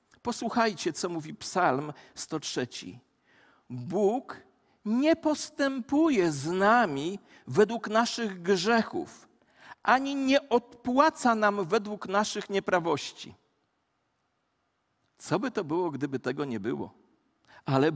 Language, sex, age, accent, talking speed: Polish, male, 40-59, native, 95 wpm